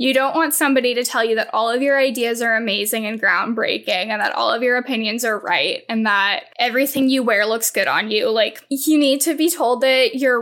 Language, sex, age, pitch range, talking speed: English, female, 10-29, 235-280 Hz, 235 wpm